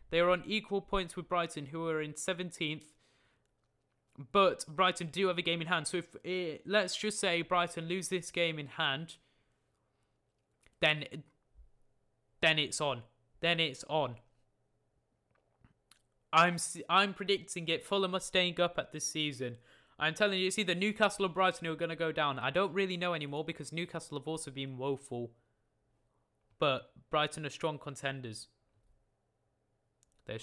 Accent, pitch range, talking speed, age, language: British, 130-180 Hz, 160 wpm, 20-39, English